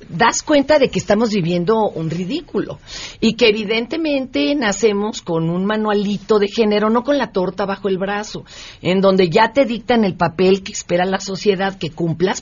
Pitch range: 175-230 Hz